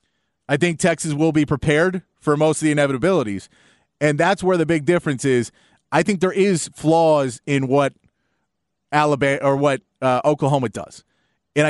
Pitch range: 135-170 Hz